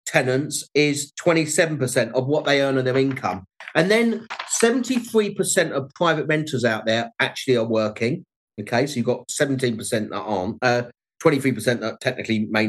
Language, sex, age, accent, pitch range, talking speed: Swedish, male, 40-59, British, 120-155 Hz, 175 wpm